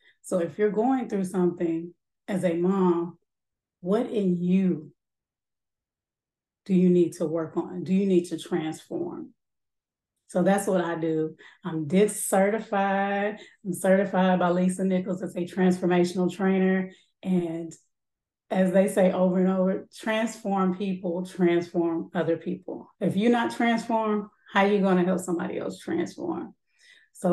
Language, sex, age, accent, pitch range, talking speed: English, female, 30-49, American, 175-200 Hz, 145 wpm